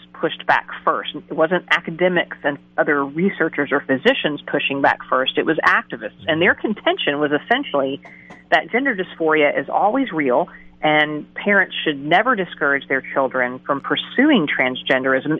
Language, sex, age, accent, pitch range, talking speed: English, female, 40-59, American, 145-190 Hz, 150 wpm